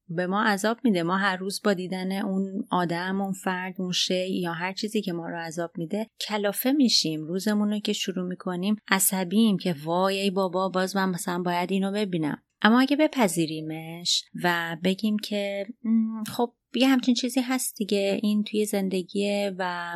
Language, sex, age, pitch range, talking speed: Persian, female, 30-49, 175-210 Hz, 170 wpm